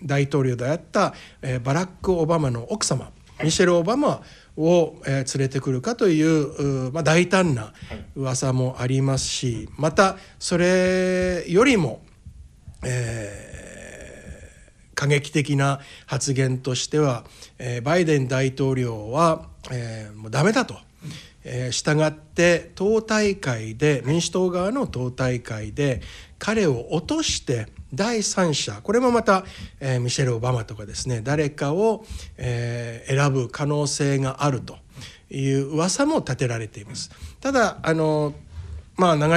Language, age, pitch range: Japanese, 60-79, 125-170 Hz